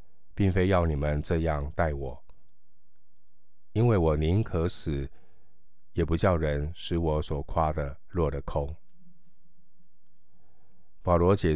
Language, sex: Chinese, male